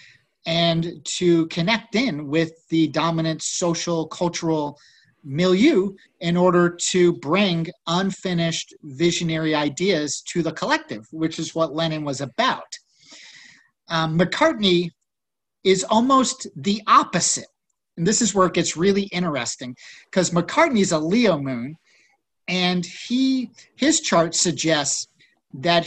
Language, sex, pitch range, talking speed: English, male, 160-190 Hz, 120 wpm